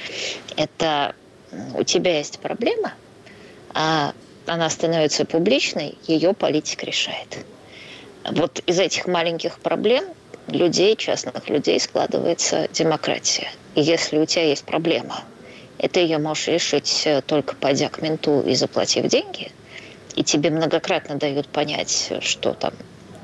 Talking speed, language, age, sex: 120 wpm, Russian, 20-39, female